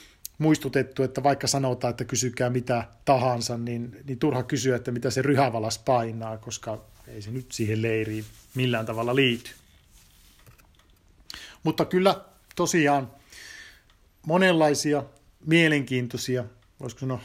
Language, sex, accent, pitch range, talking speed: Finnish, male, native, 120-150 Hz, 115 wpm